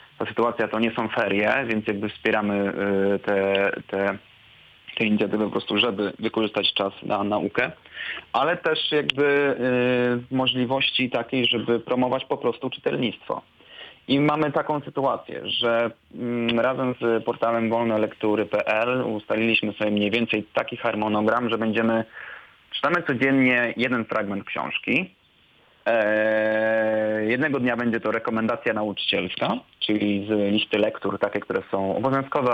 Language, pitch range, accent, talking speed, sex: Polish, 105-120 Hz, native, 120 wpm, male